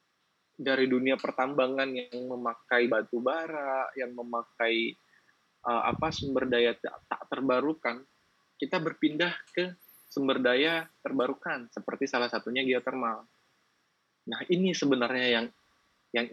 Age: 20-39